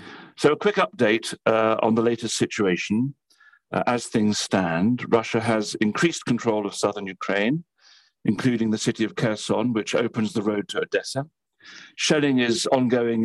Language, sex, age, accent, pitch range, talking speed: English, male, 50-69, British, 110-135 Hz, 155 wpm